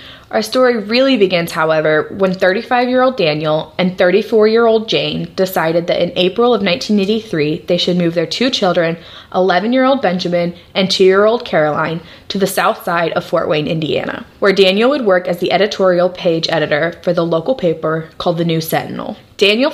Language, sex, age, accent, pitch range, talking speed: English, female, 20-39, American, 175-210 Hz, 165 wpm